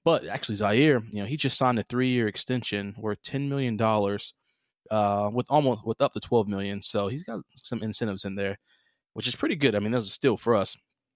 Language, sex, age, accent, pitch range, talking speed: English, male, 20-39, American, 105-125 Hz, 230 wpm